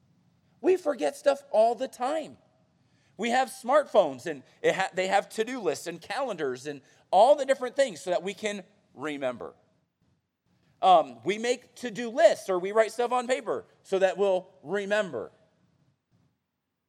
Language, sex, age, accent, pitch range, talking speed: English, male, 40-59, American, 155-260 Hz, 145 wpm